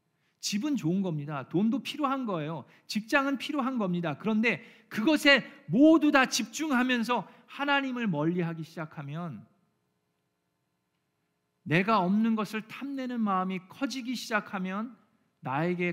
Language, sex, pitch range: Korean, male, 135-205 Hz